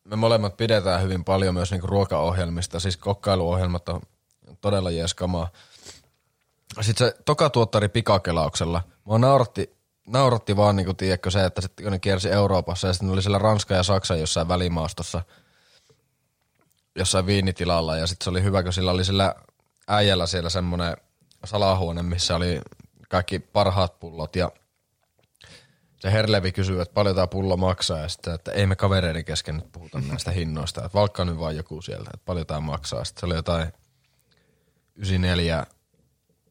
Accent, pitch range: native, 85-100 Hz